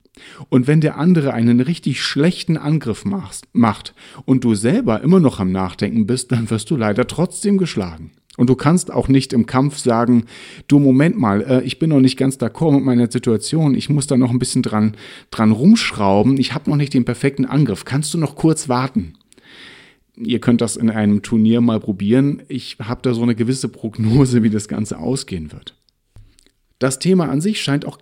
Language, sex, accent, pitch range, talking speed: German, male, German, 110-145 Hz, 195 wpm